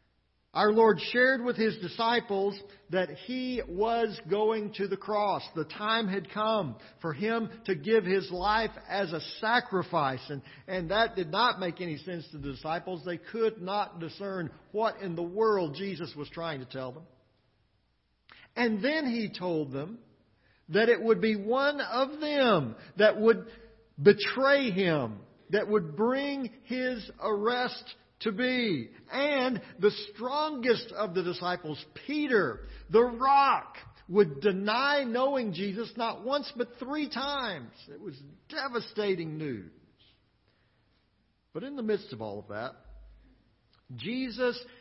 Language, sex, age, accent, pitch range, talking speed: English, male, 50-69, American, 160-230 Hz, 140 wpm